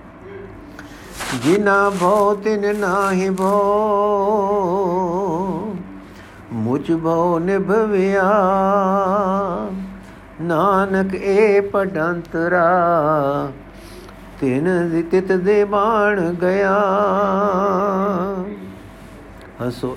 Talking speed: 55 wpm